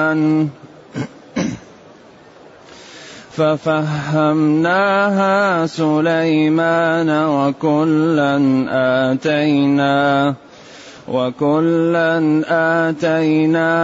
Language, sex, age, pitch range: Arabic, male, 30-49, 135-165 Hz